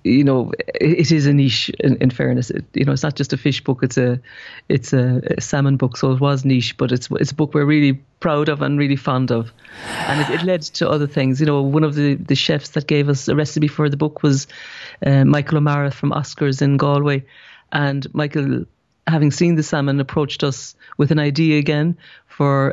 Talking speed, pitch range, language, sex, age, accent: 225 wpm, 135-155 Hz, English, female, 40-59, Irish